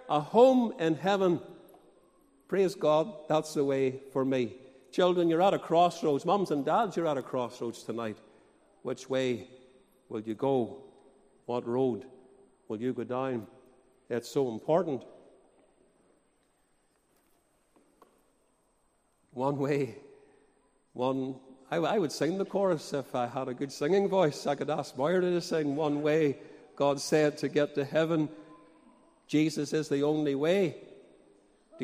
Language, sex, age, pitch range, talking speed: English, male, 50-69, 135-190 Hz, 140 wpm